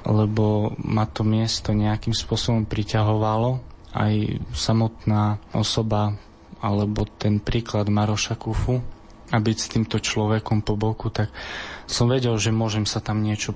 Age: 20-39